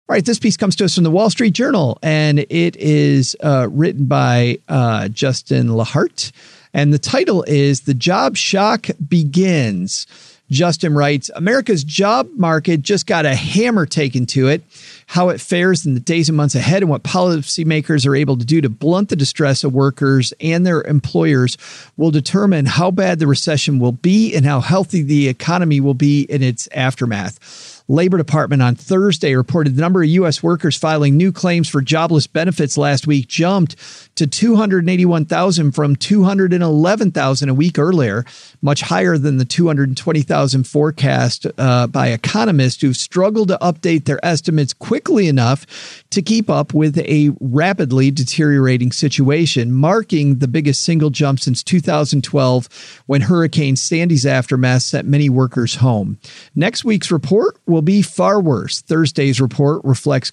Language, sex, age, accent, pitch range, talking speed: English, male, 40-59, American, 135-175 Hz, 160 wpm